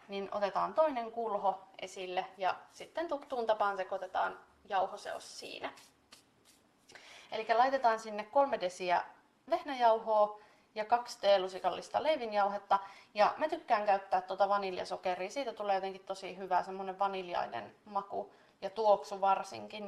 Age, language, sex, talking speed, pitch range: 20-39, Finnish, female, 120 wpm, 195-240 Hz